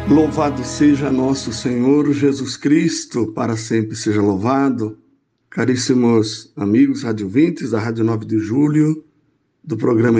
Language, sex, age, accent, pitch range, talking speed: Portuguese, male, 60-79, Brazilian, 110-145 Hz, 125 wpm